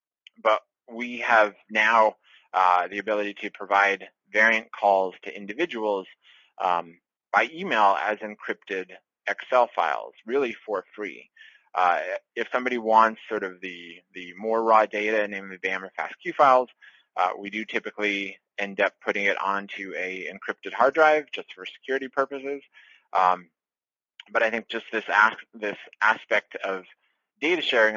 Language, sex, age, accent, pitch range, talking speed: English, male, 20-39, American, 100-115 Hz, 145 wpm